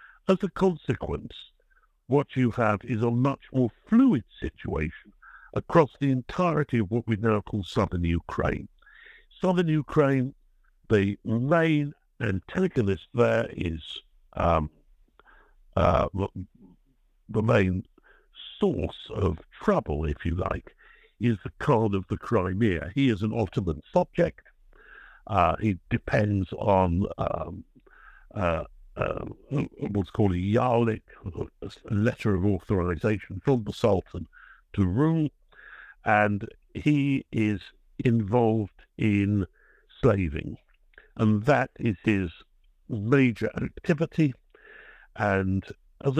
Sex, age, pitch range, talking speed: male, 60-79, 100-135 Hz, 110 wpm